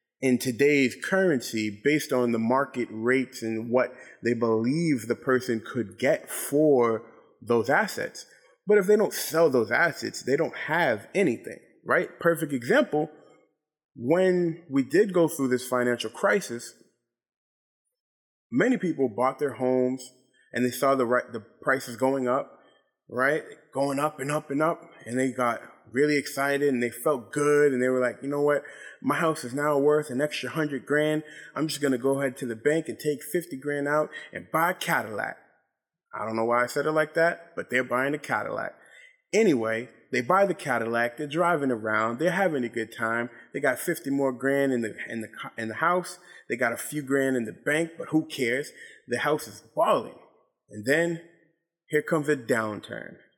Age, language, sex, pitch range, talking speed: 20-39, English, male, 125-160 Hz, 185 wpm